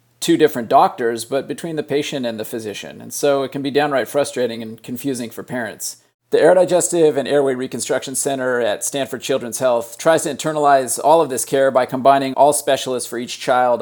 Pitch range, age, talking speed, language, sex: 125-150 Hz, 40-59, 200 wpm, English, male